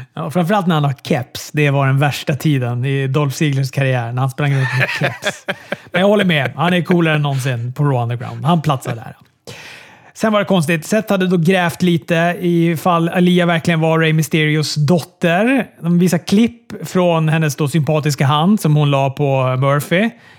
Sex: male